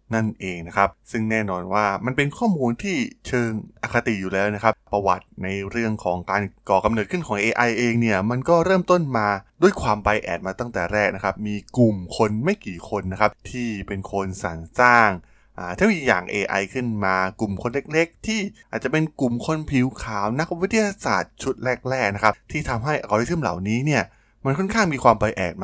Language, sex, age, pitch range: Thai, male, 20-39, 95-125 Hz